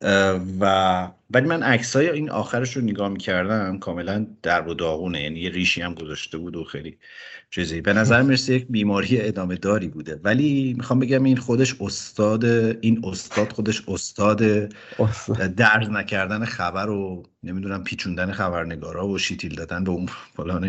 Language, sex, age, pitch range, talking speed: Persian, male, 50-69, 90-110 Hz, 160 wpm